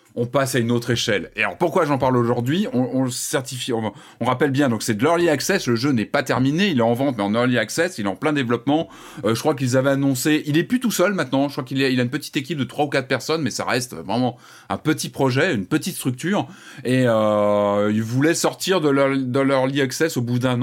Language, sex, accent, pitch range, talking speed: French, male, French, 115-145 Hz, 265 wpm